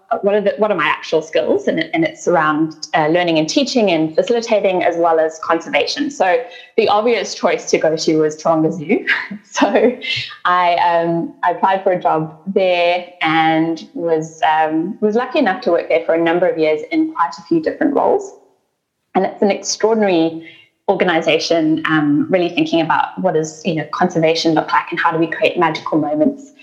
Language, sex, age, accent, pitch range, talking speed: English, female, 10-29, British, 160-230 Hz, 195 wpm